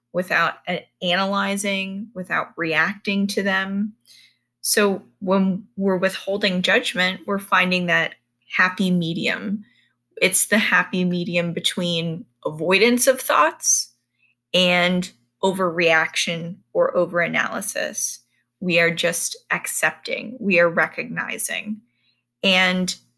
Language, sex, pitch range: English, female, 170-210 Hz